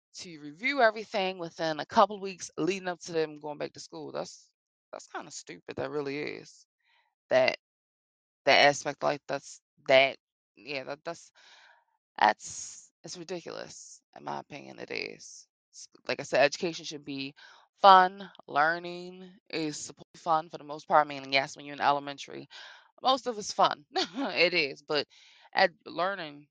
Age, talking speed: 20-39, 165 wpm